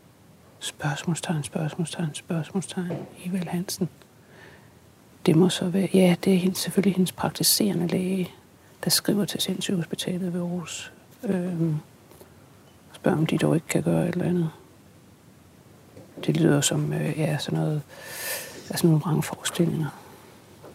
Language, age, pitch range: Danish, 60-79, 155-185 Hz